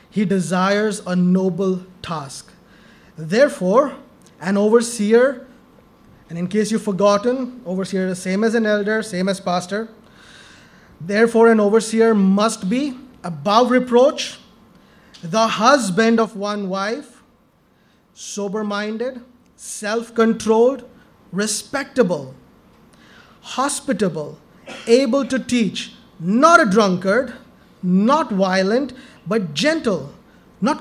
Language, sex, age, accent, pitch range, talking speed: English, male, 20-39, Indian, 200-245 Hz, 95 wpm